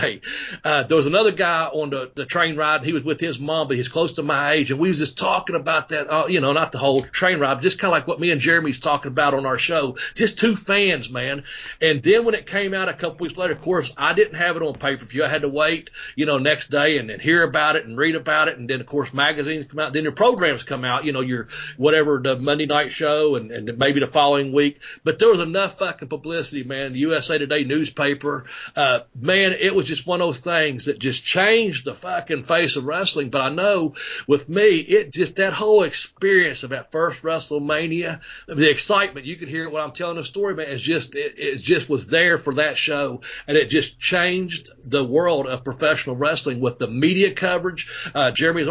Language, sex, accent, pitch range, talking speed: English, male, American, 140-170 Hz, 245 wpm